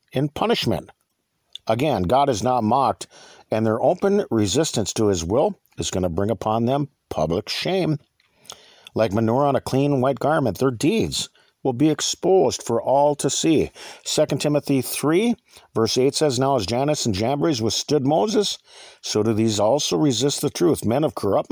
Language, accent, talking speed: English, American, 170 wpm